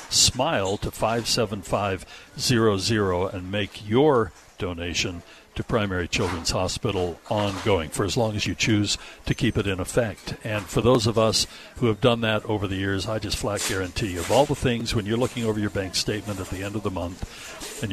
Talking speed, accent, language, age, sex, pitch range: 210 wpm, American, English, 60-79, male, 95-115 Hz